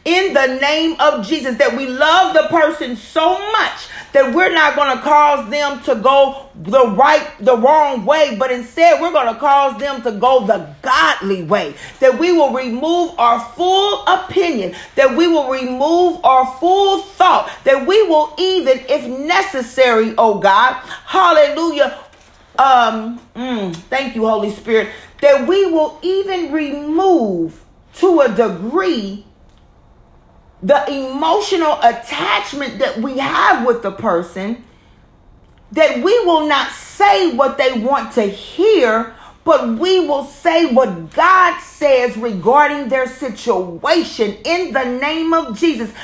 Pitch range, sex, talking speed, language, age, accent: 250-330 Hz, female, 140 wpm, English, 40-59, American